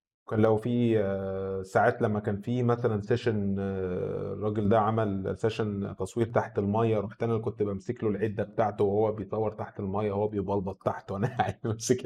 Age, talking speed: 20-39, 165 wpm